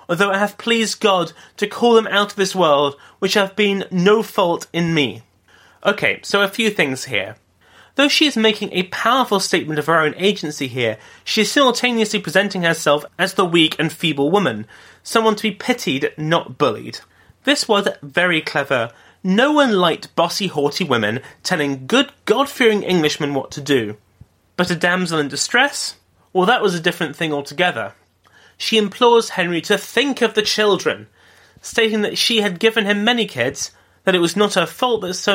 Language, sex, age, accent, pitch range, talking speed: English, male, 30-49, British, 150-210 Hz, 180 wpm